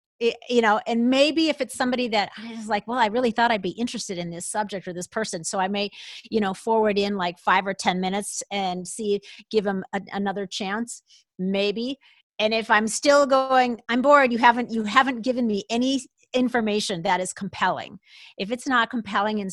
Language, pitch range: English, 190-235 Hz